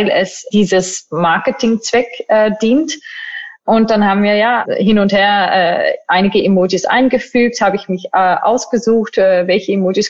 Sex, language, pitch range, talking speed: female, German, 195-255 Hz, 155 wpm